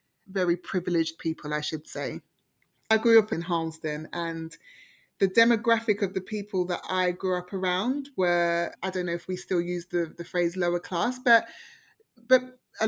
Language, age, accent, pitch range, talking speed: English, 20-39, British, 180-235 Hz, 175 wpm